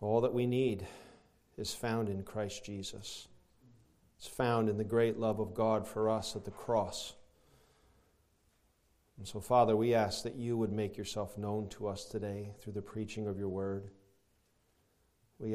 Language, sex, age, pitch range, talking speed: English, male, 40-59, 100-115 Hz, 165 wpm